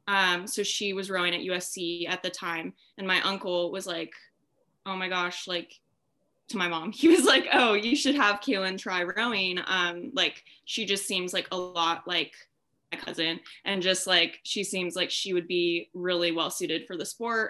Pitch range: 175-195 Hz